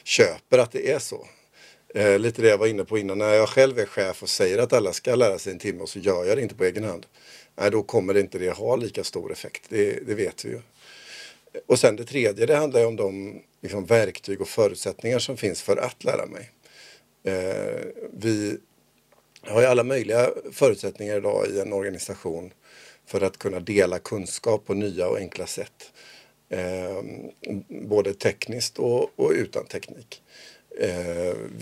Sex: male